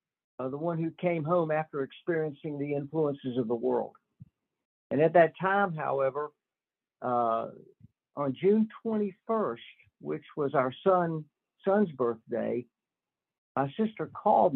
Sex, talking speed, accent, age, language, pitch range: male, 130 wpm, American, 60-79, English, 135-175 Hz